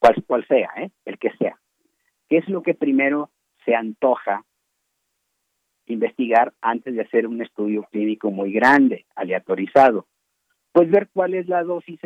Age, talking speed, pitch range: 50-69, 150 wpm, 115-170 Hz